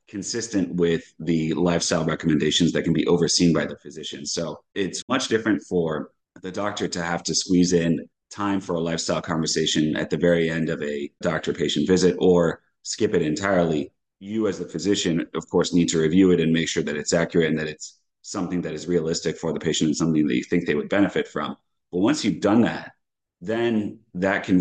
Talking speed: 205 wpm